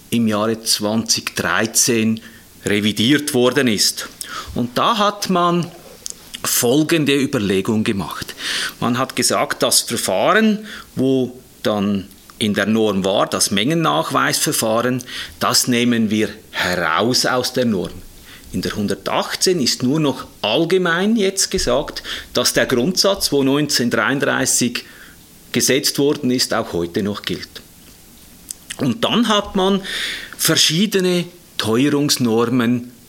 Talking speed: 110 wpm